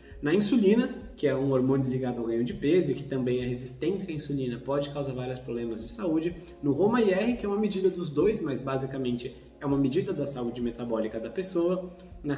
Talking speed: 215 wpm